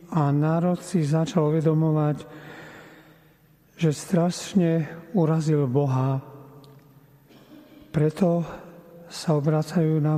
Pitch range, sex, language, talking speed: 150-170 Hz, male, Slovak, 75 wpm